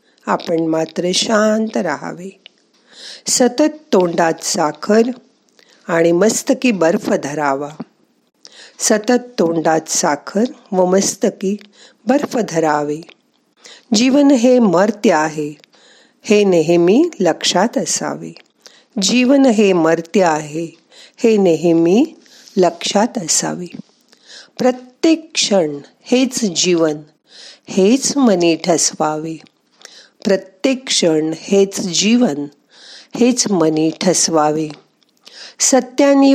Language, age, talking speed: Marathi, 50-69, 80 wpm